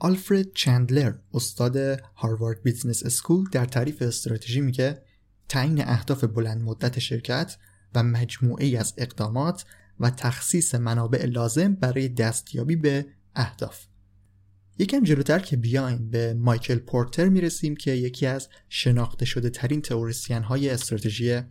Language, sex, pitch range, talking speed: Persian, male, 115-140 Hz, 125 wpm